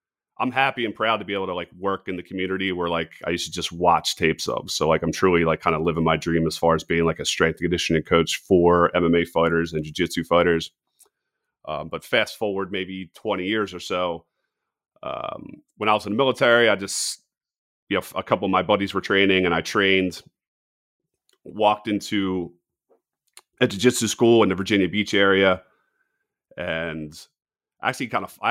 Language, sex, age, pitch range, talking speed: English, male, 30-49, 85-105 Hz, 195 wpm